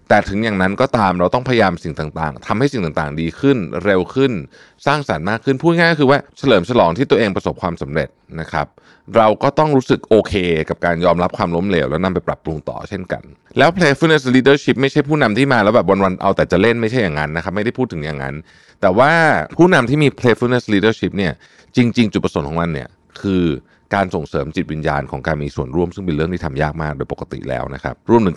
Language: Thai